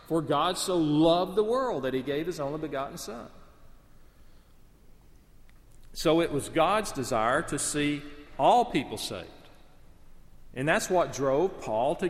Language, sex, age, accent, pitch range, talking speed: English, male, 40-59, American, 130-180 Hz, 145 wpm